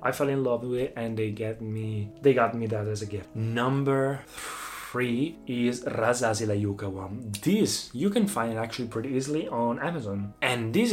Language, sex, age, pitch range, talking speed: Italian, male, 20-39, 115-140 Hz, 185 wpm